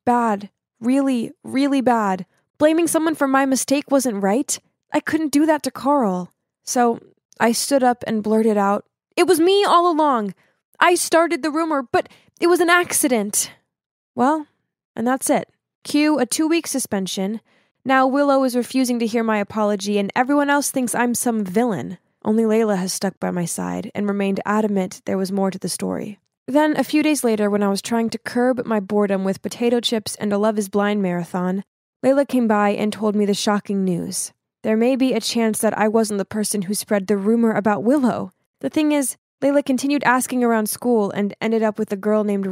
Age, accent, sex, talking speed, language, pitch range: 10-29, American, female, 195 wpm, English, 205-265 Hz